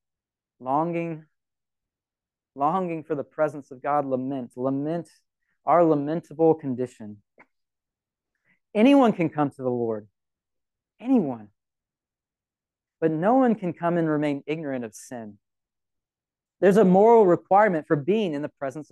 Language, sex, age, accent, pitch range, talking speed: English, male, 30-49, American, 120-190 Hz, 120 wpm